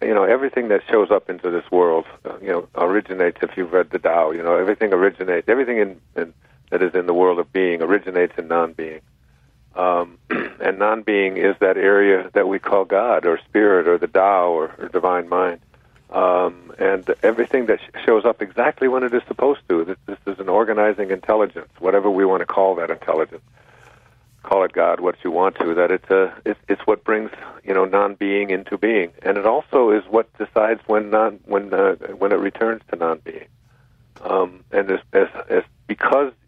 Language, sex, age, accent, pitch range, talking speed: English, male, 50-69, American, 95-130 Hz, 195 wpm